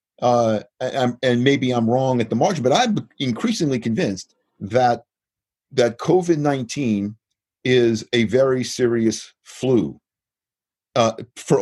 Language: English